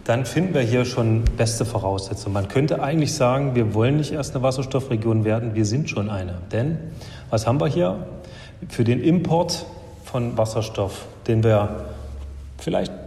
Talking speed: 160 wpm